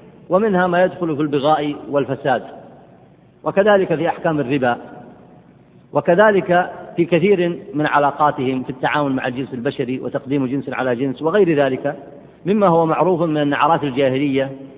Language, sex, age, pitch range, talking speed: Arabic, male, 50-69, 135-185 Hz, 130 wpm